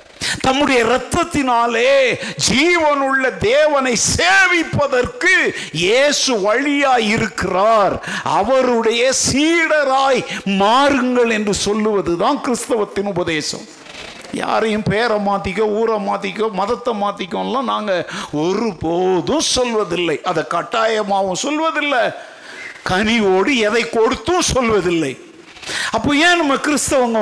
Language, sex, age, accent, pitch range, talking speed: Tamil, male, 50-69, native, 170-265 Hz, 75 wpm